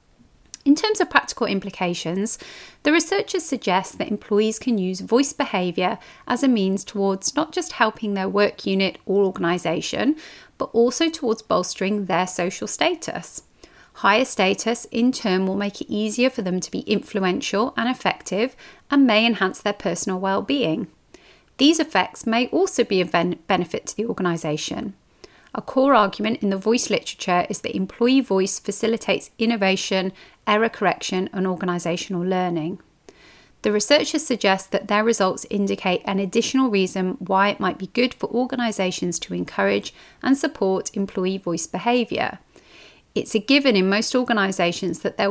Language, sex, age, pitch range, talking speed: English, female, 30-49, 185-235 Hz, 150 wpm